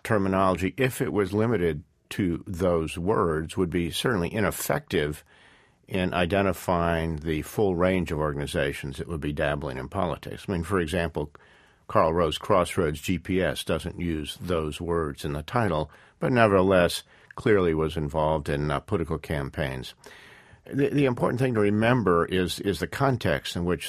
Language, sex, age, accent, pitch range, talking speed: English, male, 50-69, American, 80-100 Hz, 155 wpm